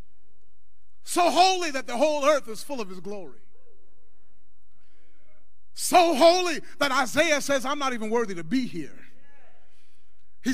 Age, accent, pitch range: 30-49, American, 215-275 Hz